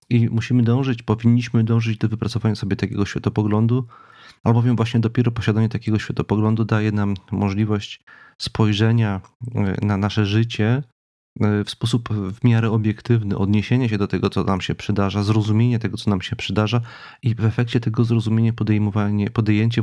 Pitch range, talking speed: 100-115 Hz, 145 wpm